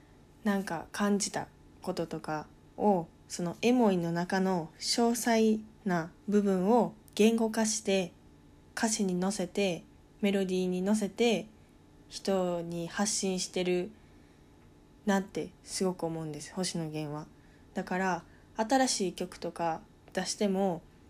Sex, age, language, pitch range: female, 20-39, Japanese, 175-215 Hz